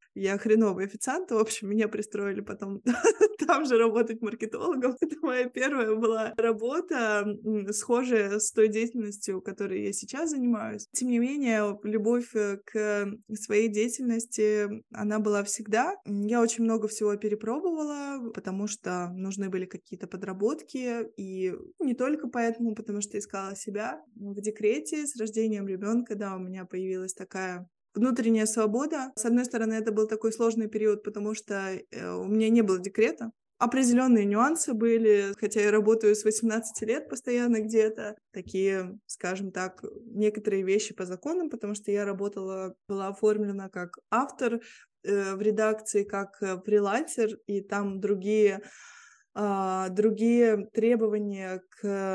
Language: Russian